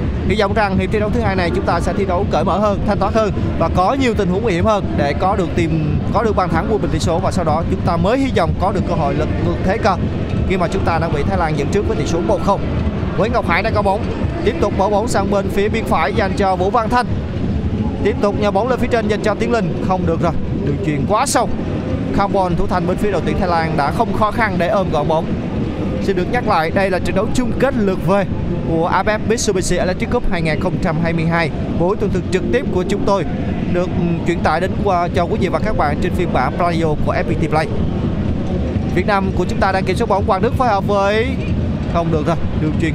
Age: 20-39